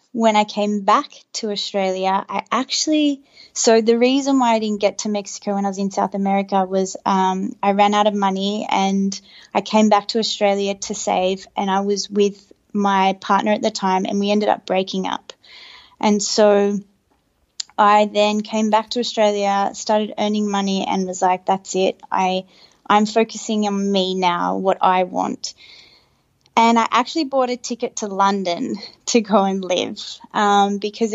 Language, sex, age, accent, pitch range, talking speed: English, female, 20-39, Australian, 195-220 Hz, 180 wpm